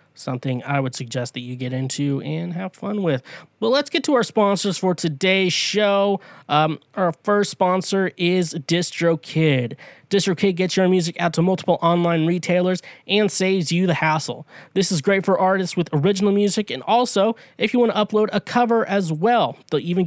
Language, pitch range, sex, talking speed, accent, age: English, 140-185 Hz, male, 190 wpm, American, 20-39